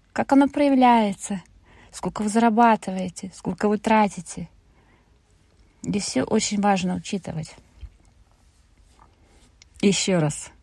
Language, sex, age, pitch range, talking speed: Russian, female, 30-49, 170-225 Hz, 90 wpm